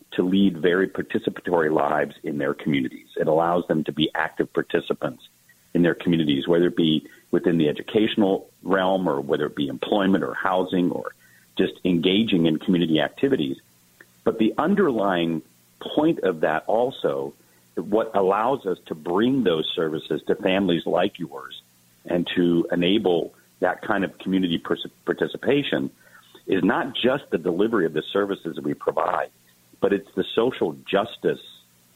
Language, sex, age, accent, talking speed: English, male, 50-69, American, 150 wpm